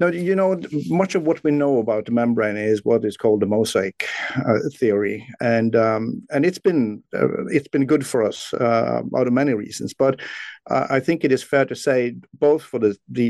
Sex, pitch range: male, 110-140 Hz